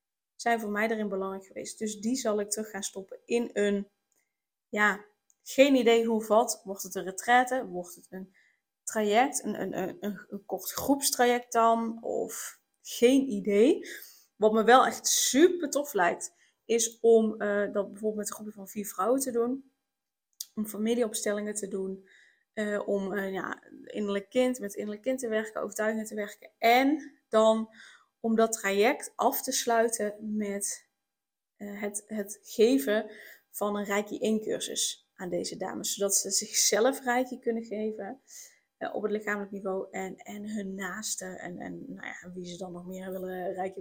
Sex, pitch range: female, 200-235 Hz